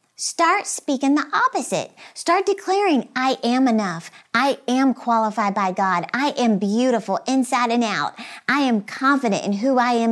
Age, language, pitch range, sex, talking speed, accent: 50-69, English, 220-280 Hz, female, 160 wpm, American